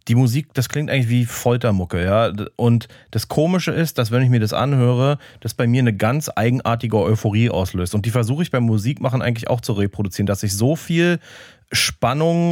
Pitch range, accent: 105-125 Hz, German